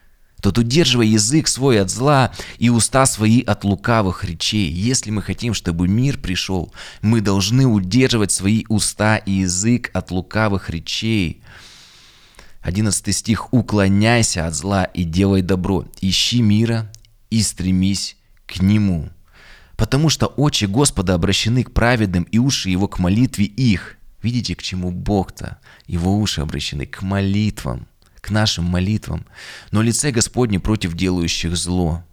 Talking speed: 135 wpm